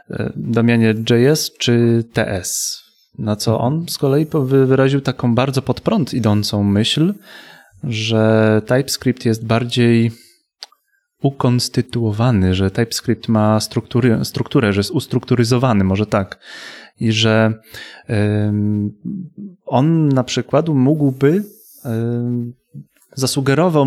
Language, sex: Polish, male